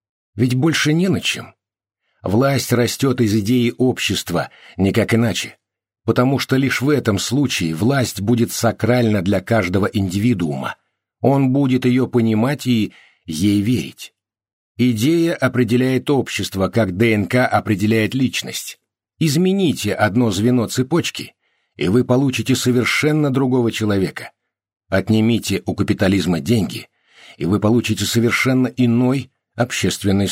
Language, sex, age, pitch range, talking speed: Russian, male, 60-79, 100-125 Hz, 115 wpm